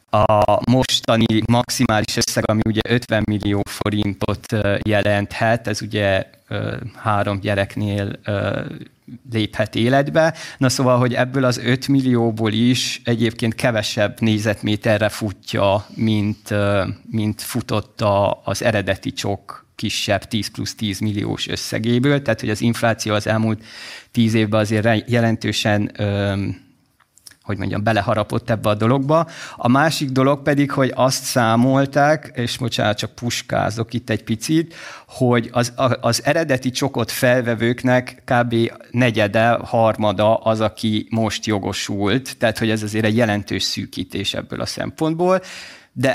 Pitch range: 105-125 Hz